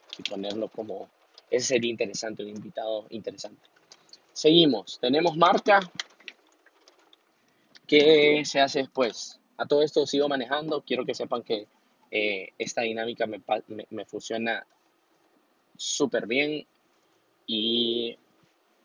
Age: 20-39